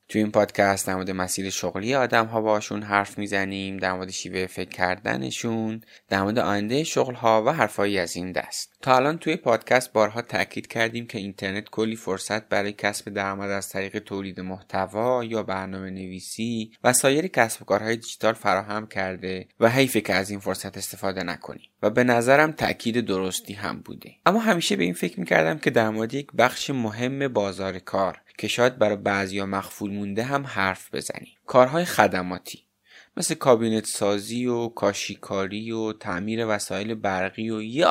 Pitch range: 95-120 Hz